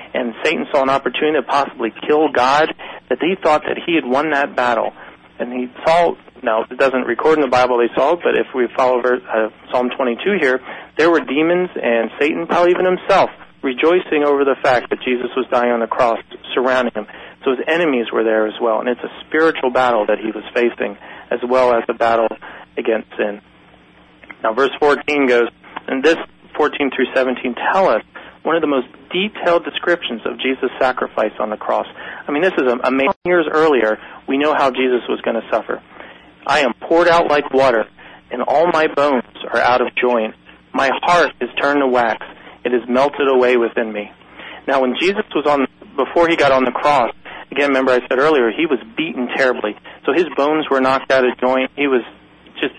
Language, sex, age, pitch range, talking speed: English, male, 40-59, 120-150 Hz, 205 wpm